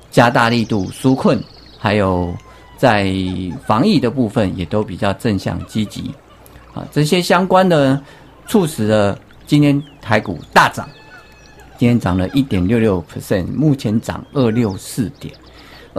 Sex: male